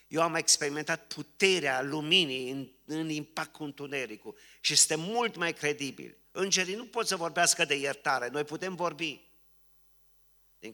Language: Romanian